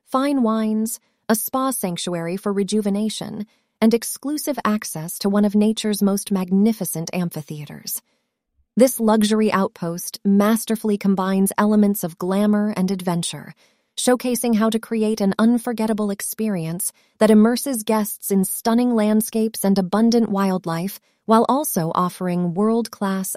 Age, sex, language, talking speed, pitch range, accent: 30-49, female, English, 120 wpm, 185-230 Hz, American